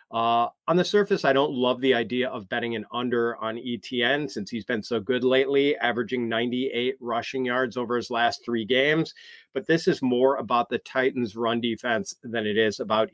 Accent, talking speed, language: American, 195 wpm, English